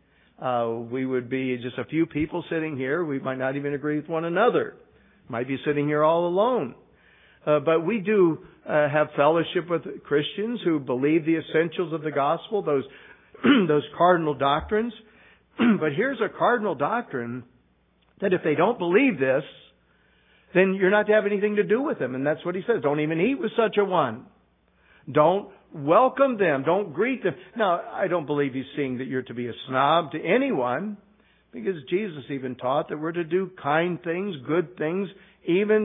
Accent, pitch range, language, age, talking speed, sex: American, 145-205 Hz, English, 60-79, 185 wpm, male